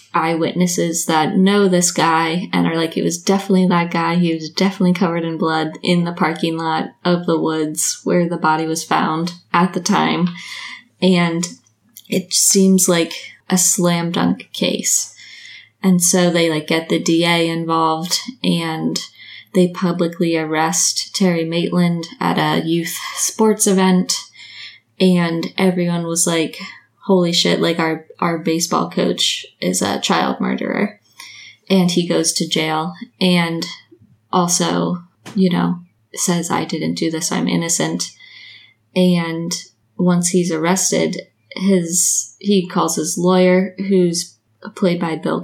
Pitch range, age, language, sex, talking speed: 165-185 Hz, 20-39, English, female, 140 wpm